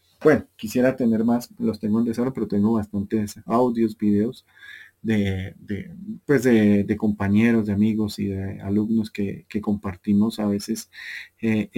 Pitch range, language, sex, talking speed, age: 100-120 Hz, Spanish, male, 140 wpm, 30-49